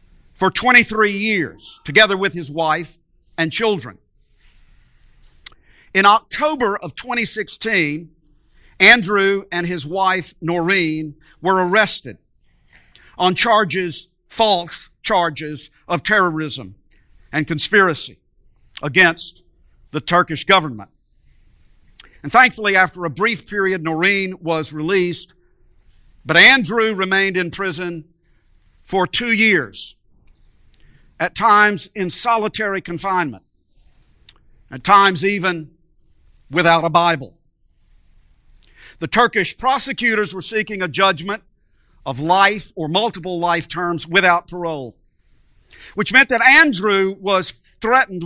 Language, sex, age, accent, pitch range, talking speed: English, male, 50-69, American, 155-205 Hz, 100 wpm